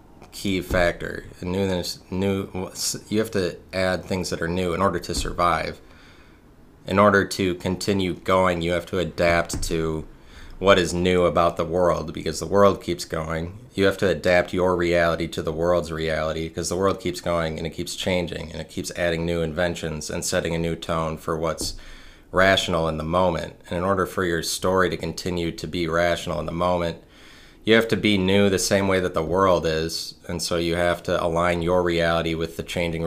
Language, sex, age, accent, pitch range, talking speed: English, male, 30-49, American, 80-90 Hz, 200 wpm